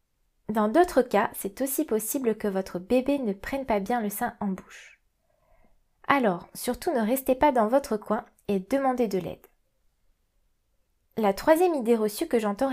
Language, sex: French, female